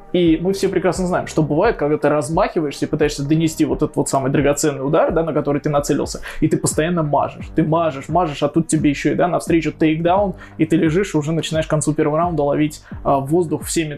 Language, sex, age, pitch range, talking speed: Russian, male, 20-39, 150-170 Hz, 225 wpm